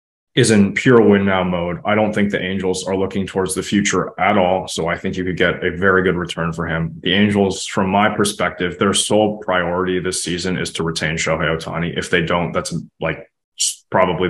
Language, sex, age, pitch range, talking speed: English, male, 20-39, 85-105 Hz, 215 wpm